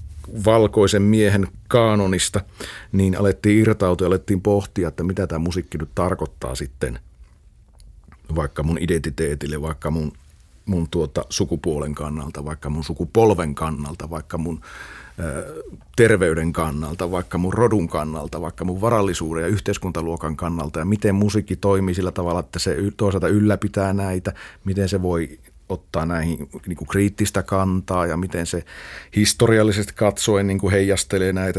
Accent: native